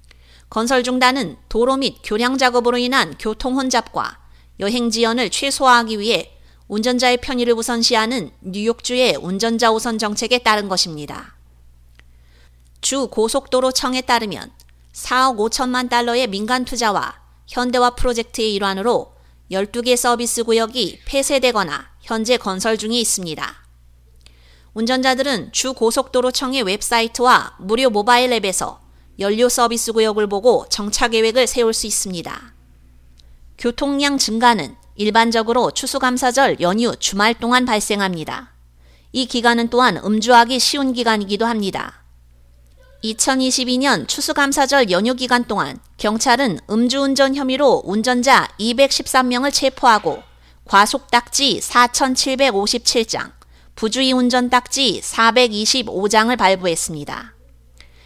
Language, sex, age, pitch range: Korean, female, 30-49, 195-250 Hz